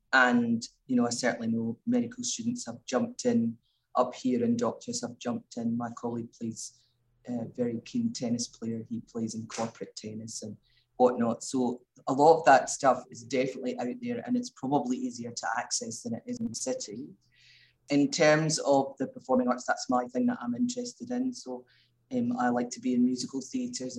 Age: 30-49